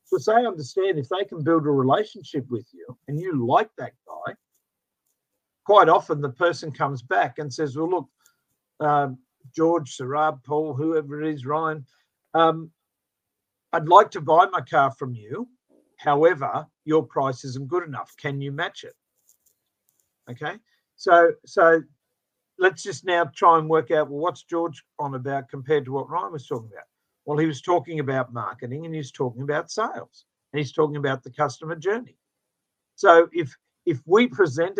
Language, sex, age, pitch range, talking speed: English, male, 50-69, 135-165 Hz, 170 wpm